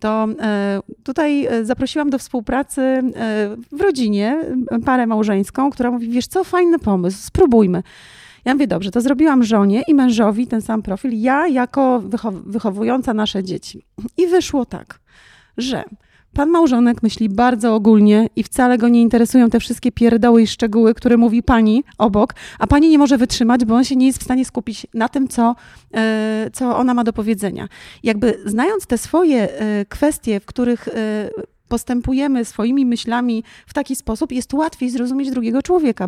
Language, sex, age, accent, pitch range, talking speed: Polish, female, 30-49, native, 220-265 Hz, 155 wpm